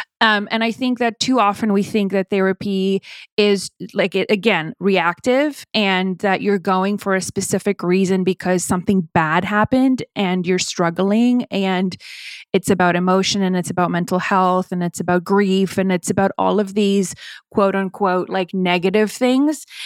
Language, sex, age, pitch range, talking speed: English, female, 20-39, 185-225 Hz, 165 wpm